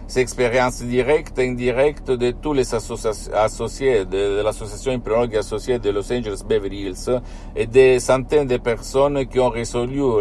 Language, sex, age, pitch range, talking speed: Italian, male, 50-69, 105-130 Hz, 165 wpm